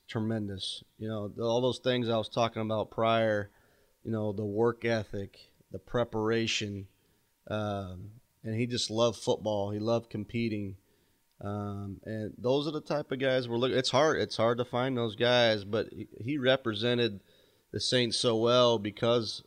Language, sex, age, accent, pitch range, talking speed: English, male, 30-49, American, 105-120 Hz, 165 wpm